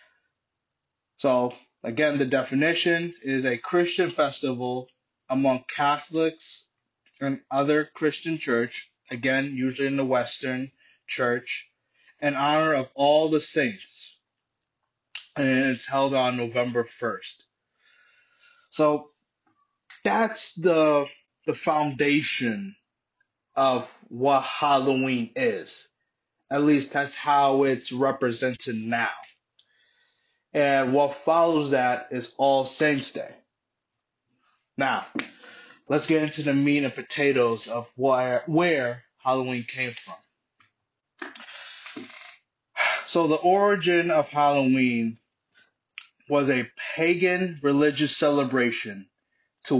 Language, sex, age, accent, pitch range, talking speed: English, male, 20-39, American, 130-155 Hz, 95 wpm